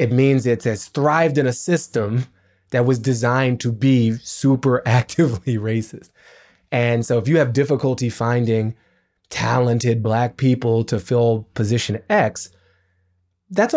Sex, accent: male, American